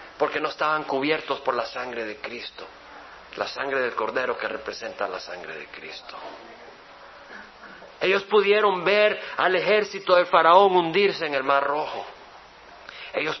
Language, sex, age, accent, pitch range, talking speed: Spanish, male, 50-69, Mexican, 140-200 Hz, 145 wpm